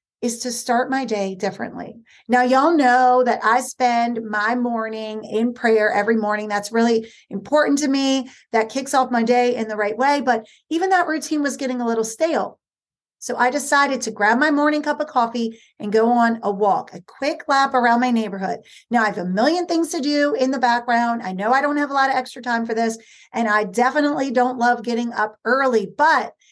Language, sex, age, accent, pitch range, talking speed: English, female, 40-59, American, 230-285 Hz, 215 wpm